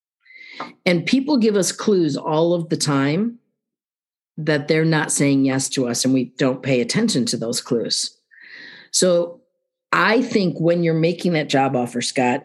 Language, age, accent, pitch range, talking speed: English, 50-69, American, 140-185 Hz, 165 wpm